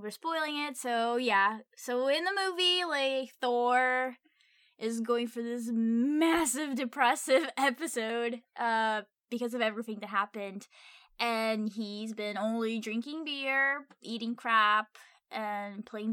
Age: 10-29